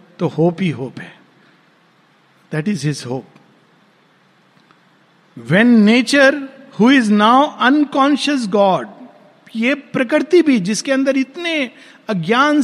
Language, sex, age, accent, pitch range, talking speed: Hindi, male, 50-69, native, 165-245 Hz, 95 wpm